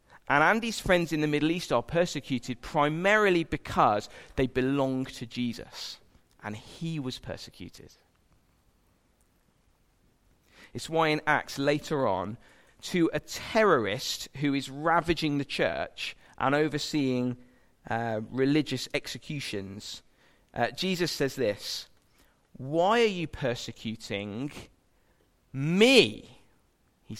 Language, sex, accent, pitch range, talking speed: English, male, British, 125-165 Hz, 105 wpm